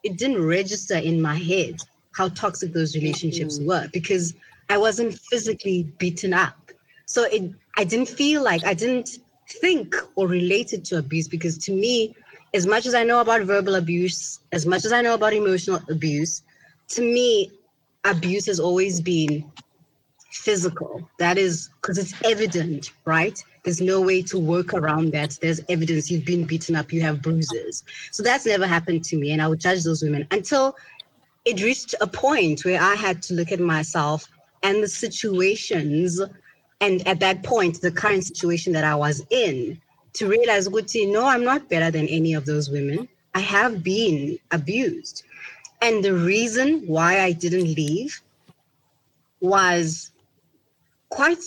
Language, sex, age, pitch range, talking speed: English, female, 20-39, 165-215 Hz, 165 wpm